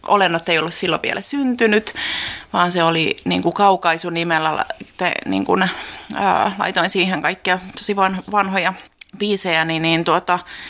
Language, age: Finnish, 30-49